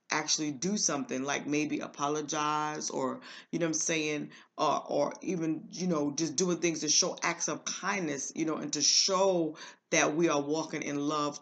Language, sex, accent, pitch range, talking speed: English, female, American, 150-180 Hz, 190 wpm